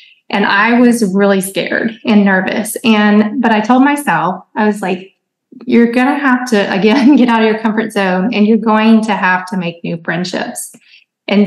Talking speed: 195 wpm